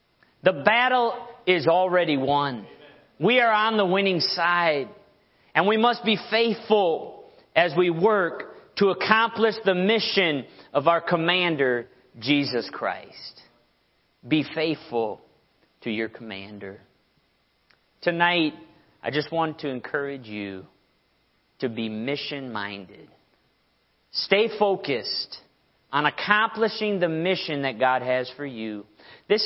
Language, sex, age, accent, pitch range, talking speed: English, male, 40-59, American, 135-210 Hz, 110 wpm